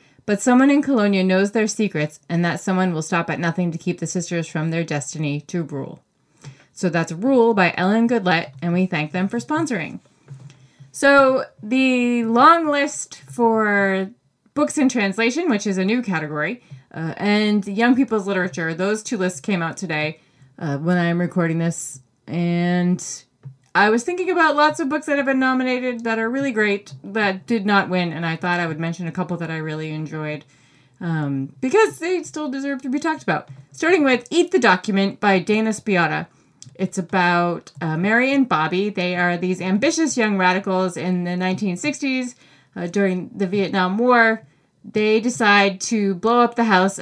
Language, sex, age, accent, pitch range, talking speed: English, female, 20-39, American, 165-230 Hz, 180 wpm